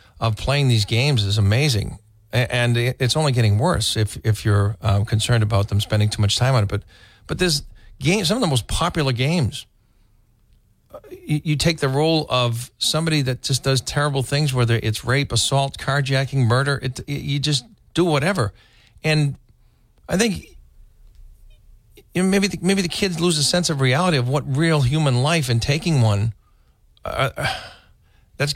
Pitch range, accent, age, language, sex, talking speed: 110-145 Hz, American, 40-59, English, male, 180 wpm